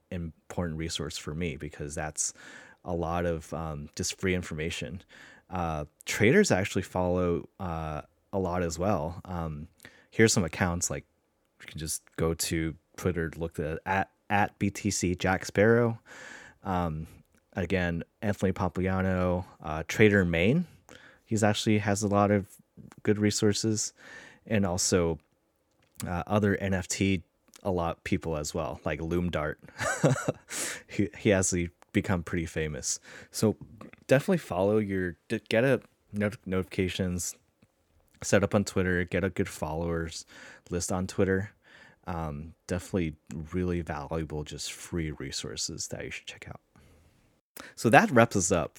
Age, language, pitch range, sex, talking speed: 30-49, English, 80-100 Hz, male, 140 wpm